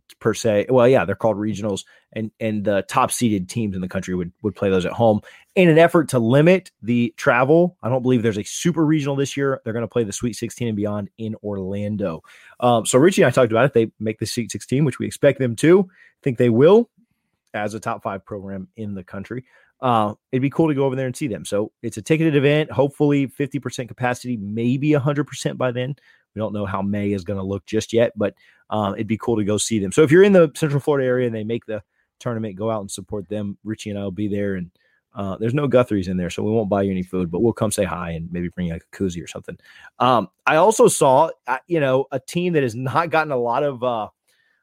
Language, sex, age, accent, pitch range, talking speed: English, male, 30-49, American, 105-145 Hz, 255 wpm